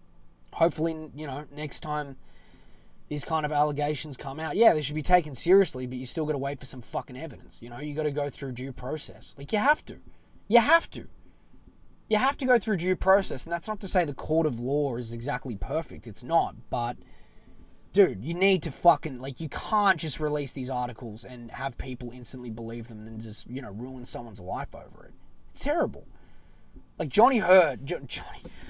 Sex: male